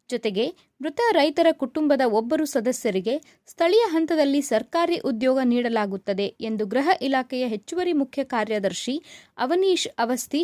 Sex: female